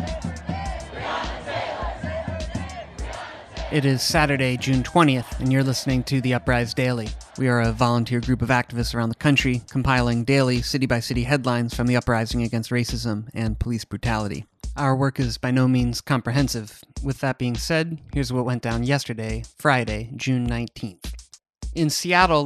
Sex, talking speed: male, 150 wpm